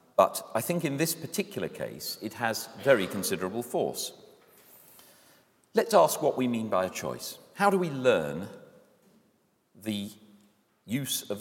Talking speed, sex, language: 140 wpm, male, English